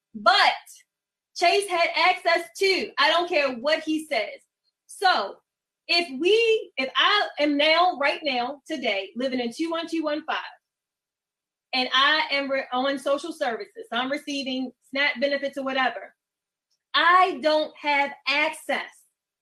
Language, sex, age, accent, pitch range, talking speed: English, female, 20-39, American, 290-370 Hz, 125 wpm